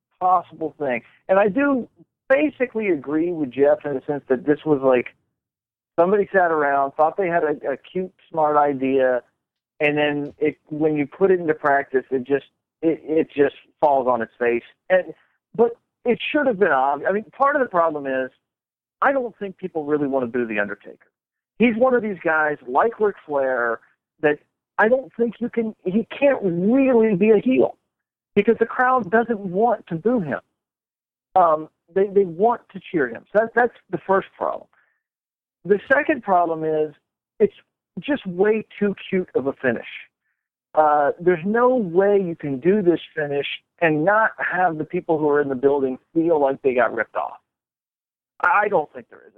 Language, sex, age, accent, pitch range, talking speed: English, male, 50-69, American, 145-210 Hz, 185 wpm